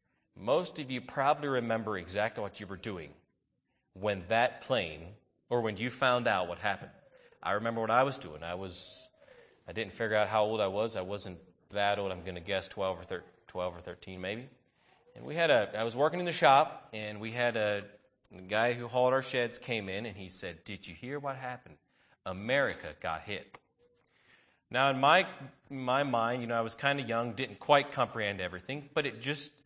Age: 30-49